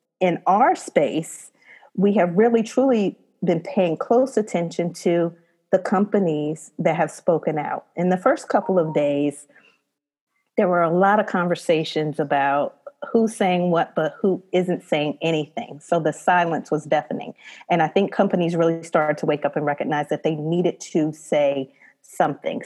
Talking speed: 160 wpm